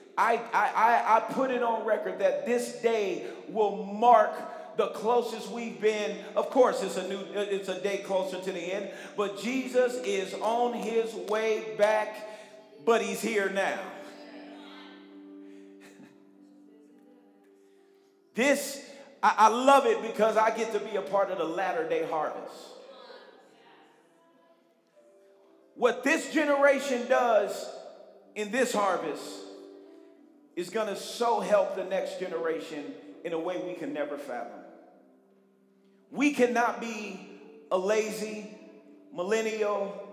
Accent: American